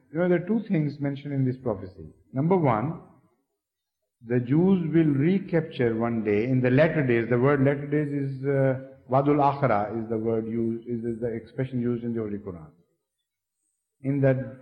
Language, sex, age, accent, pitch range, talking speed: English, male, 50-69, Indian, 125-170 Hz, 185 wpm